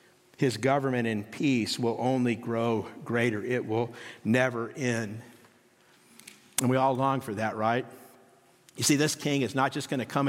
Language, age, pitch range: English, 50-69, 120-145 Hz